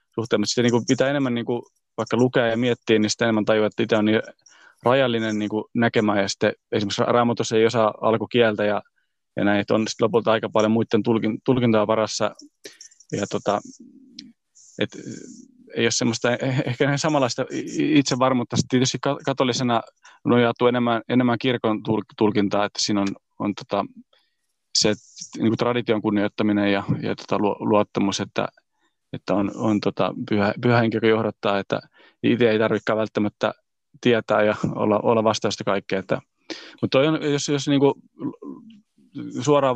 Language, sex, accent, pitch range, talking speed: Finnish, male, native, 110-130 Hz, 140 wpm